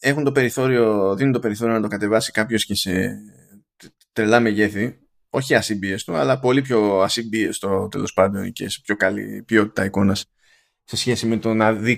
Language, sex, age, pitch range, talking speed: Greek, male, 20-39, 105-160 Hz, 170 wpm